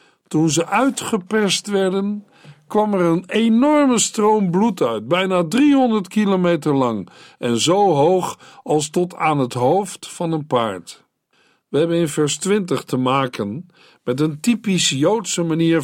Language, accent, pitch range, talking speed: Dutch, Dutch, 140-190 Hz, 145 wpm